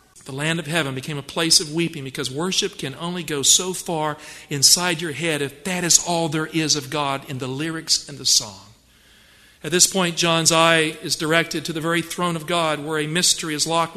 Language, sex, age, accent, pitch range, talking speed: English, male, 50-69, American, 160-205 Hz, 220 wpm